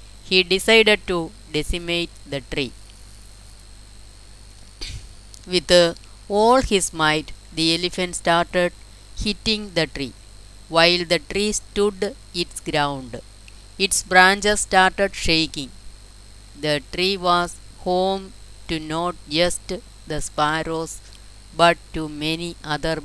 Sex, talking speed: female, 105 wpm